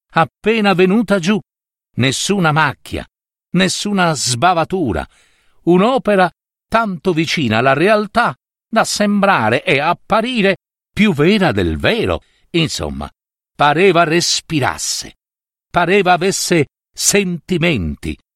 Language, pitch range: Italian, 120-185 Hz